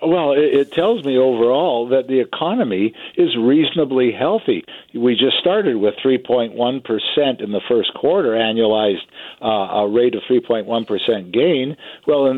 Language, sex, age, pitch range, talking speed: English, male, 60-79, 120-150 Hz, 140 wpm